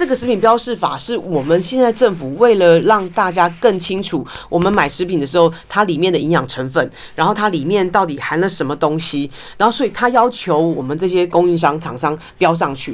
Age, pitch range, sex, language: 40-59, 160-210 Hz, female, Chinese